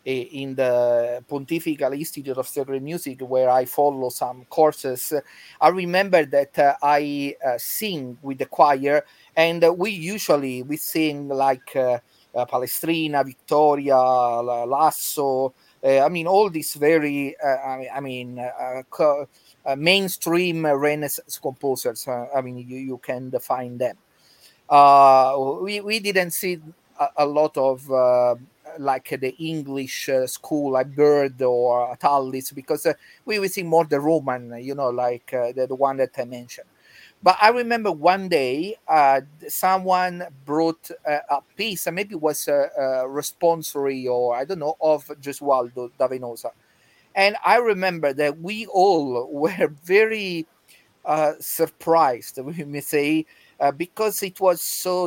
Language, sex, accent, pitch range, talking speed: English, male, Italian, 130-165 Hz, 145 wpm